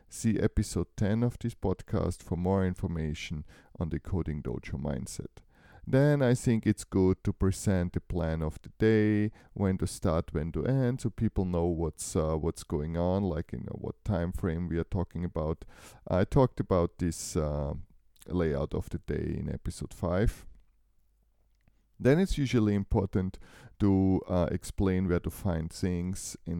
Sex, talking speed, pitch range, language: male, 165 wpm, 85-105 Hz, English